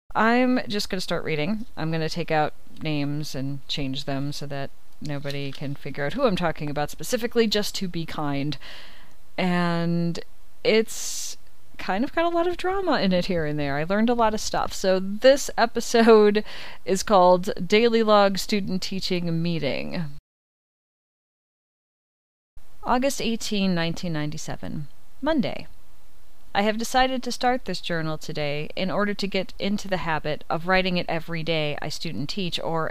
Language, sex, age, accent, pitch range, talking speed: English, female, 30-49, American, 155-215 Hz, 160 wpm